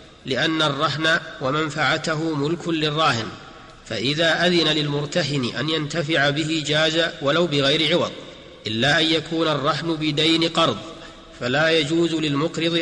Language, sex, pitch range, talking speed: Arabic, male, 155-165 Hz, 110 wpm